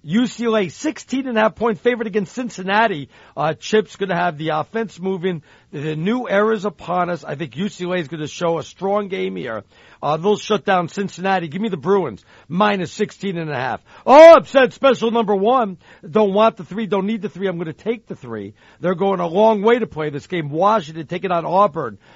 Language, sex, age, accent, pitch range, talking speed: English, male, 60-79, American, 175-220 Hz, 210 wpm